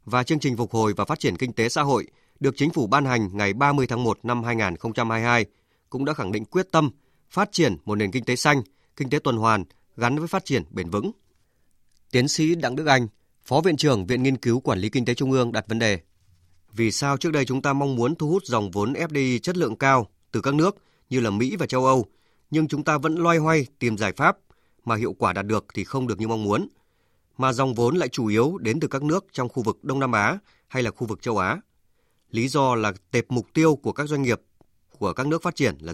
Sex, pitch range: male, 110-150 Hz